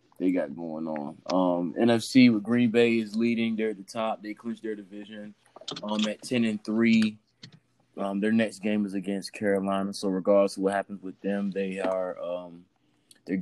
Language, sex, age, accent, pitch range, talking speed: English, male, 20-39, American, 95-110 Hz, 185 wpm